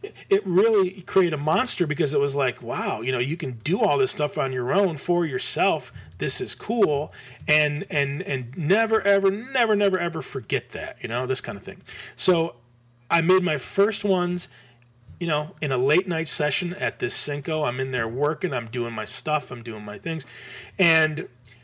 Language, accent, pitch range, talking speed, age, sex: English, American, 130-185 Hz, 195 wpm, 30-49, male